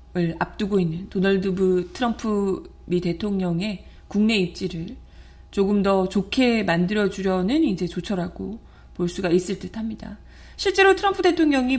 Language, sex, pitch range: Korean, female, 180-245 Hz